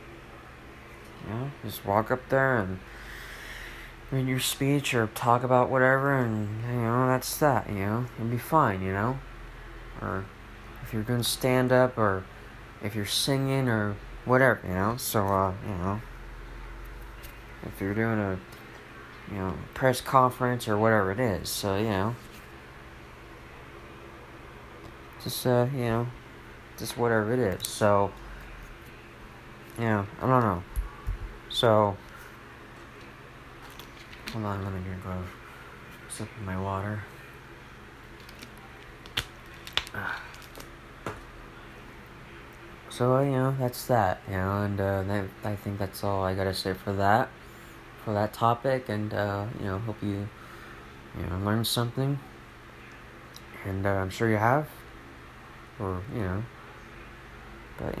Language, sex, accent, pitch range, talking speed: English, male, American, 95-120 Hz, 130 wpm